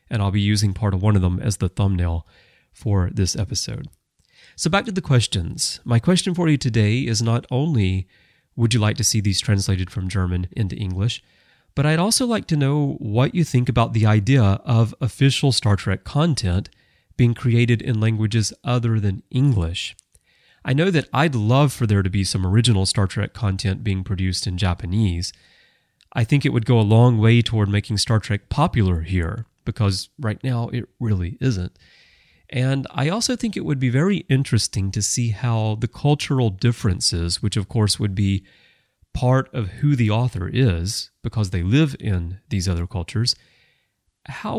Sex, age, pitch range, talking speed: male, 30-49, 100-130 Hz, 180 wpm